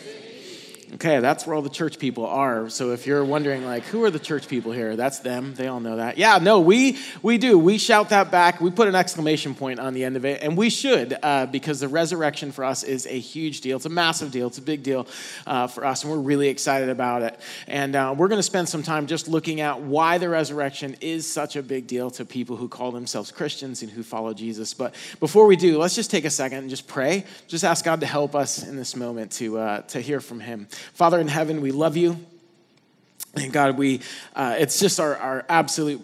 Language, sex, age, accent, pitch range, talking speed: English, male, 30-49, American, 125-160 Hz, 240 wpm